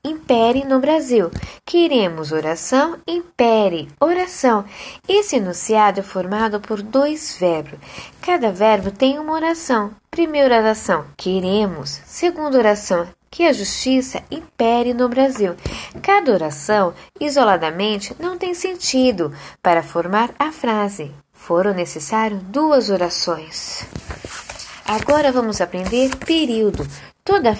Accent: Brazilian